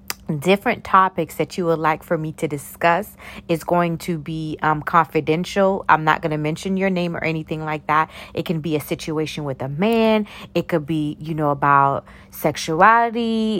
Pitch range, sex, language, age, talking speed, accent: 150-180 Hz, female, English, 30-49, 185 wpm, American